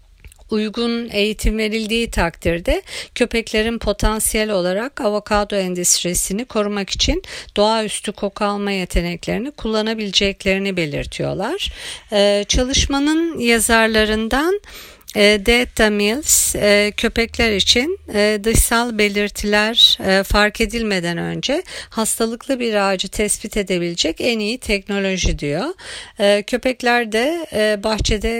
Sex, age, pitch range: female, 50-69, 185-230 Hz